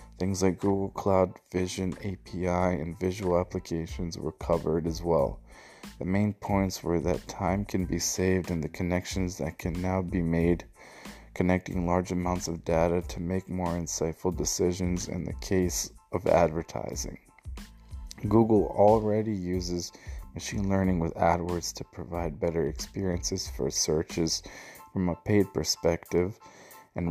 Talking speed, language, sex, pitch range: 140 wpm, English, male, 85-95 Hz